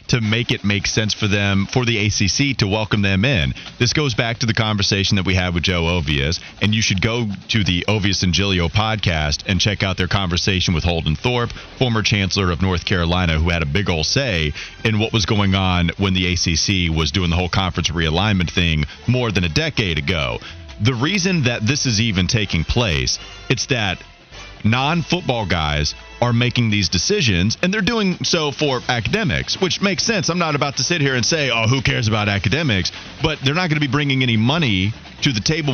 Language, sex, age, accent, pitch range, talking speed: English, male, 30-49, American, 95-130 Hz, 210 wpm